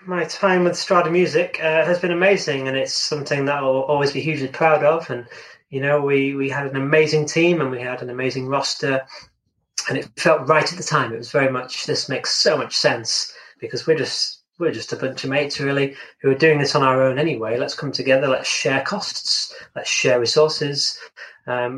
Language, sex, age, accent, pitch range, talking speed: English, male, 20-39, British, 130-155 Hz, 215 wpm